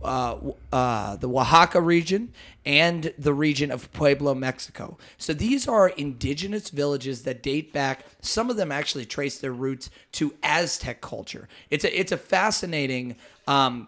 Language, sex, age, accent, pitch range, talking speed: English, male, 30-49, American, 135-165 Hz, 150 wpm